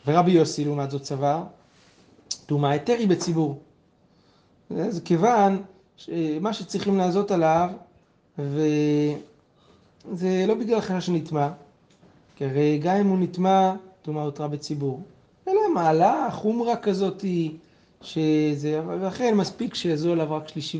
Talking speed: 115 wpm